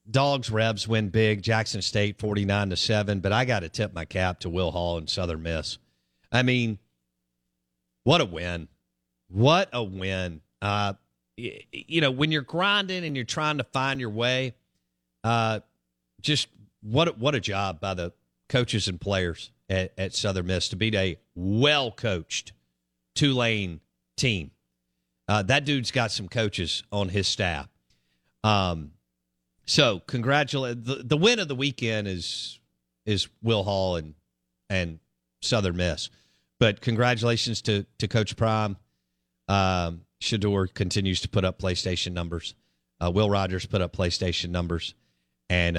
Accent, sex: American, male